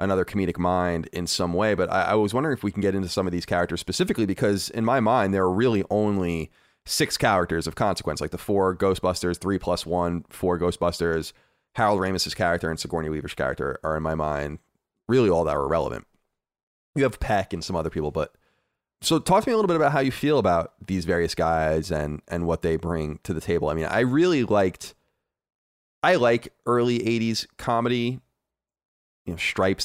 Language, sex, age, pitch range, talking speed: English, male, 30-49, 80-105 Hz, 200 wpm